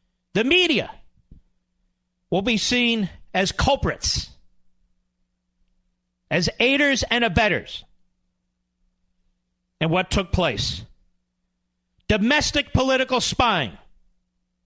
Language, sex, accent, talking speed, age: English, male, American, 75 wpm, 50-69